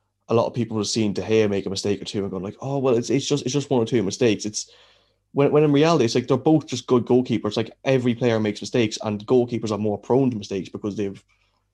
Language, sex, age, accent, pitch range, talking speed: English, male, 20-39, Irish, 95-110 Hz, 275 wpm